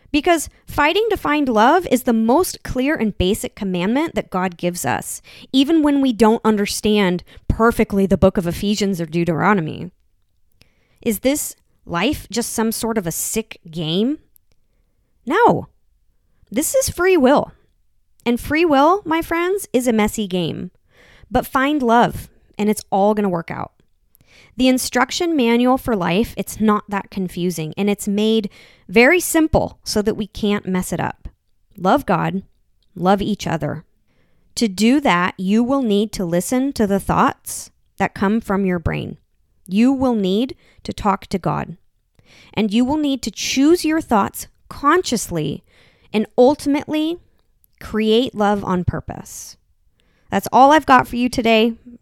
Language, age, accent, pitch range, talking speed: English, 20-39, American, 195-265 Hz, 155 wpm